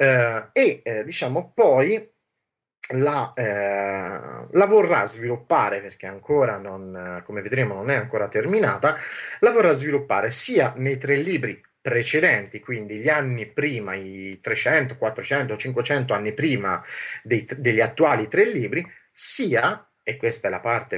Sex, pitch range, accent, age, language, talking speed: male, 115-155 Hz, native, 30-49, Italian, 130 wpm